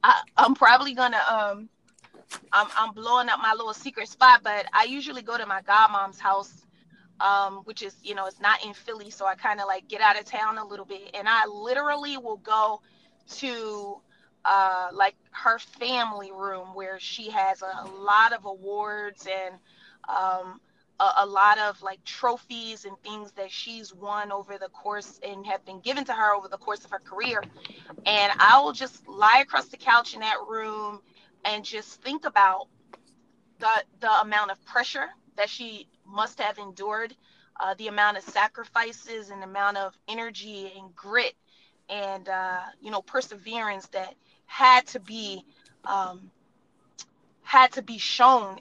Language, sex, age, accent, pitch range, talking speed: English, female, 20-39, American, 195-230 Hz, 170 wpm